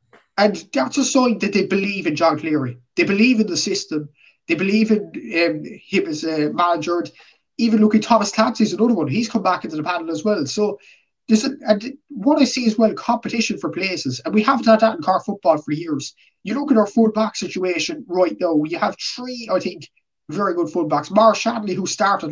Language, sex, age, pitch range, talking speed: English, male, 20-39, 170-220 Hz, 210 wpm